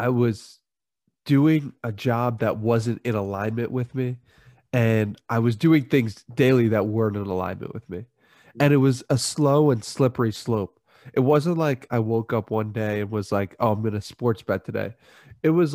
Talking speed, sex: 195 wpm, male